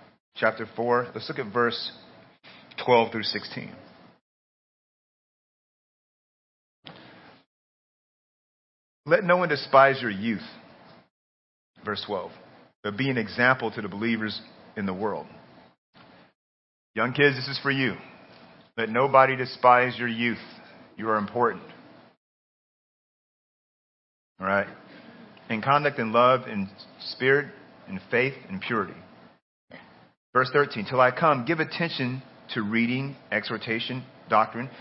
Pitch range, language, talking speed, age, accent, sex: 105-125 Hz, English, 110 wpm, 40-59, American, male